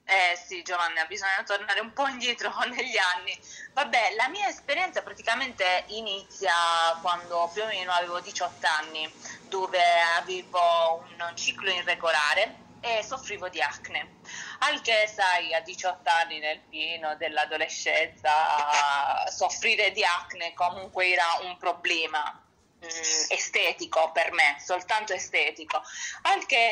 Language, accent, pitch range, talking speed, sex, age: Italian, native, 170-265 Hz, 120 wpm, female, 20-39